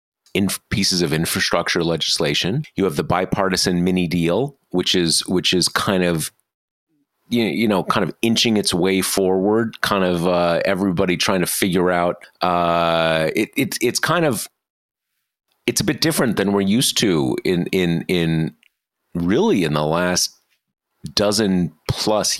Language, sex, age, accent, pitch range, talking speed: English, male, 30-49, American, 90-135 Hz, 150 wpm